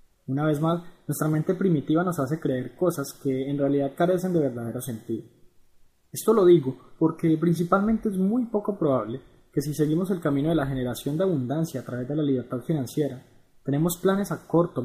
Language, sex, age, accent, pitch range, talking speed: Spanish, male, 20-39, Colombian, 130-170 Hz, 185 wpm